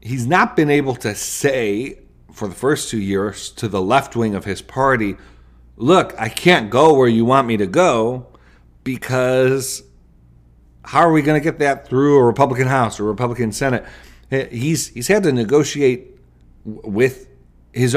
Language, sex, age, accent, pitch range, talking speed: English, male, 40-59, American, 85-130 Hz, 170 wpm